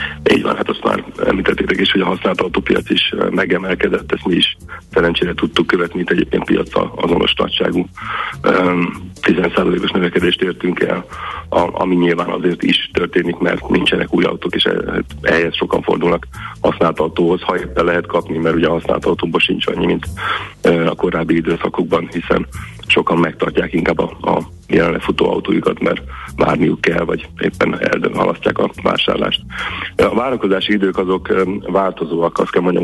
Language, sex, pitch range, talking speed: Hungarian, male, 85-90 Hz, 150 wpm